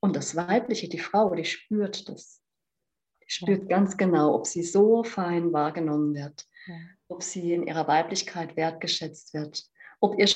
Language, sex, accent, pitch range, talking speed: German, female, German, 165-200 Hz, 155 wpm